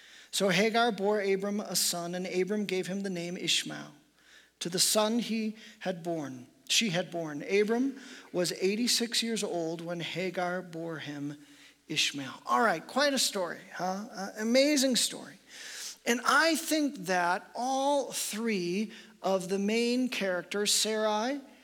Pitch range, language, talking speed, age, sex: 180-235 Hz, English, 145 wpm, 40-59, male